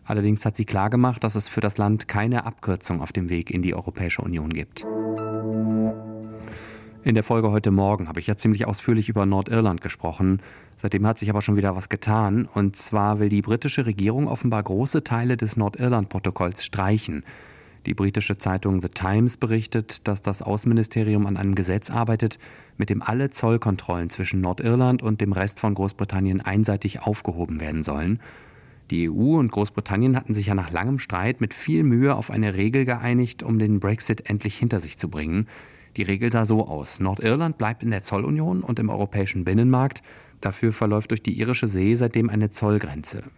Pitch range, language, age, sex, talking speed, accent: 100-115 Hz, German, 30-49, male, 175 wpm, German